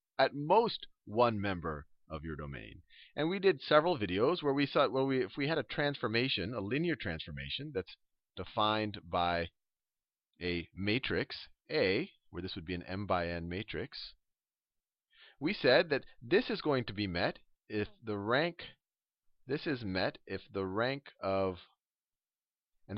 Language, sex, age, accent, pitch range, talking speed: English, male, 40-59, American, 90-135 Hz, 155 wpm